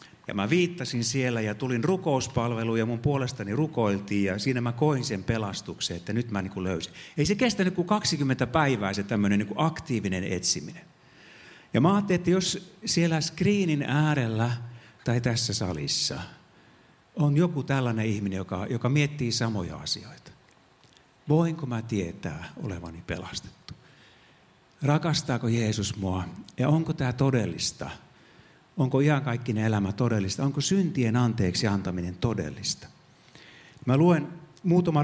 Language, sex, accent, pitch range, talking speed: Finnish, male, native, 100-150 Hz, 130 wpm